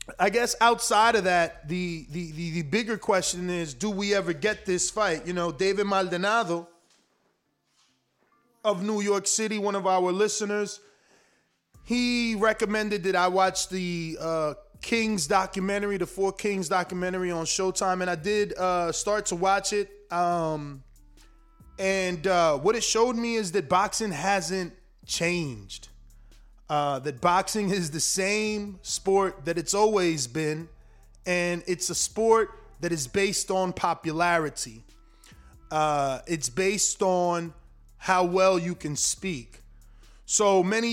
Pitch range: 165-200 Hz